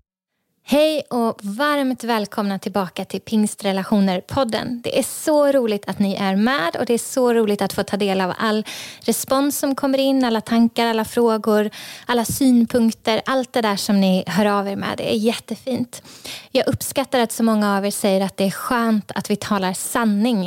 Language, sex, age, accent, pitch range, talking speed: Swedish, female, 20-39, native, 200-245 Hz, 190 wpm